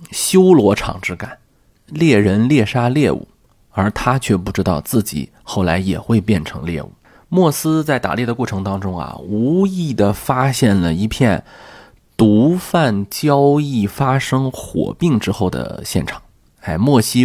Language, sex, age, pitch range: Chinese, male, 20-39, 95-130 Hz